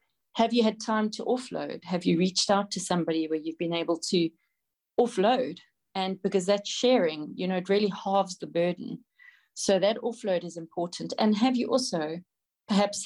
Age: 40-59